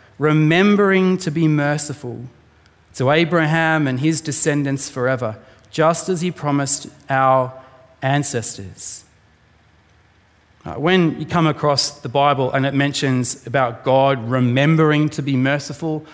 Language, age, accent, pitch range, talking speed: English, 30-49, Australian, 130-185 Hz, 115 wpm